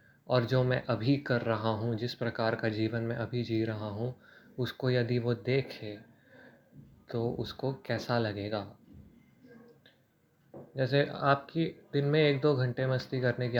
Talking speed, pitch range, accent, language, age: 150 wpm, 115-130 Hz, native, Hindi, 20-39